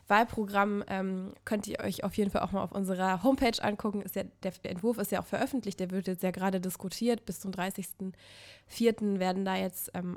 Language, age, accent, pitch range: German, 20-39, German, 185-205 Hz